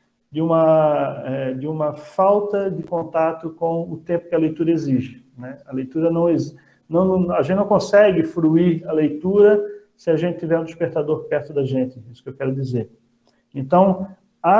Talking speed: 175 wpm